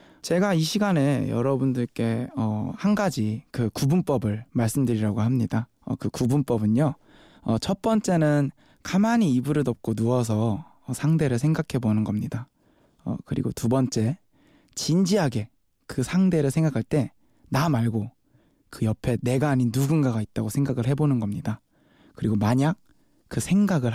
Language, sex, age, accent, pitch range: Korean, male, 20-39, native, 115-145 Hz